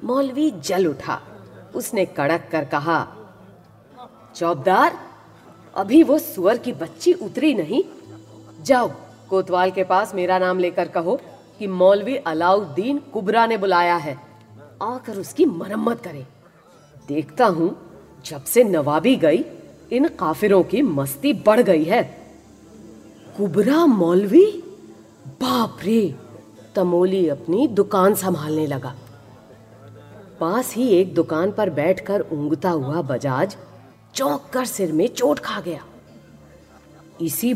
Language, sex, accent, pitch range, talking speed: Hindi, female, native, 145-220 Hz, 115 wpm